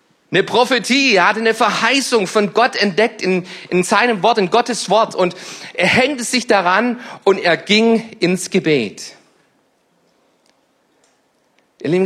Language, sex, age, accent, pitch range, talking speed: German, male, 40-59, German, 170-230 Hz, 135 wpm